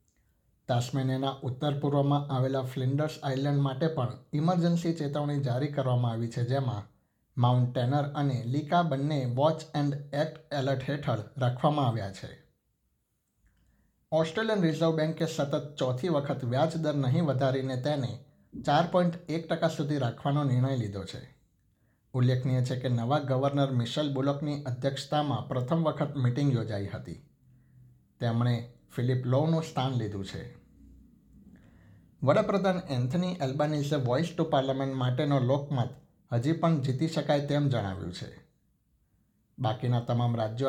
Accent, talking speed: native, 120 wpm